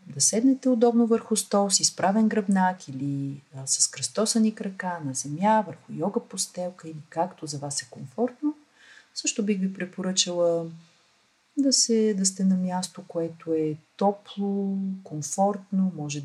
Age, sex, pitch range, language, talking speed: 40-59, female, 150-210 Hz, Bulgarian, 150 wpm